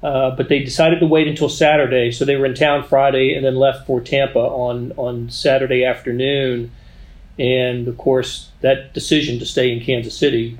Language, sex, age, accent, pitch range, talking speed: English, male, 40-59, American, 125-160 Hz, 185 wpm